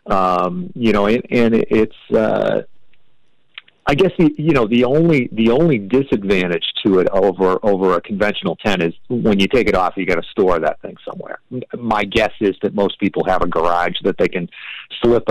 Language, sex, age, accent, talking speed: English, male, 40-59, American, 195 wpm